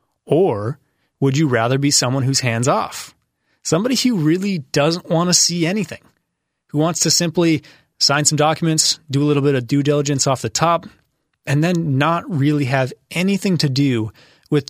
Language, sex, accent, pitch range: English, male, American, 130-160 Hz